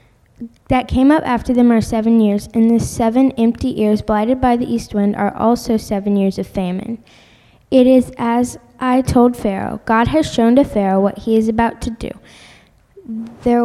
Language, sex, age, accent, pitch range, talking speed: English, female, 10-29, American, 210-245 Hz, 185 wpm